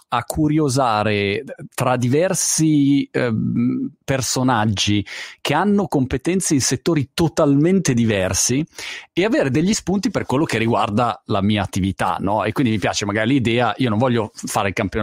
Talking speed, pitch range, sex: 150 wpm, 115-160 Hz, male